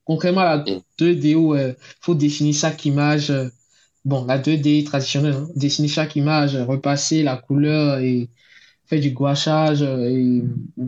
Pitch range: 130-150 Hz